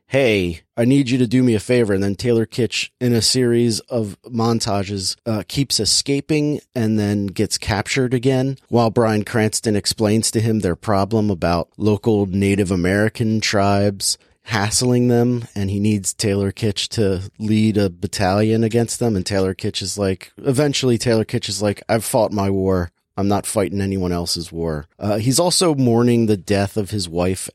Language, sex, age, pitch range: English, male, 30-49, 100-120 Hz